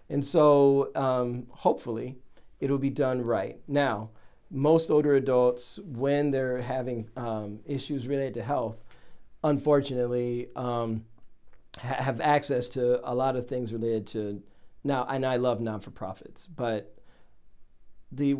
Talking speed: 130 wpm